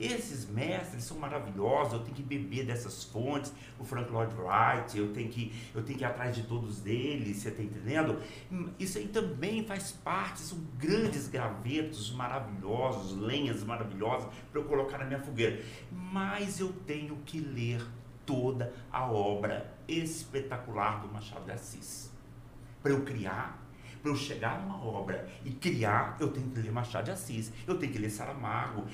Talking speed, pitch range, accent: 160 wpm, 120-155 Hz, Brazilian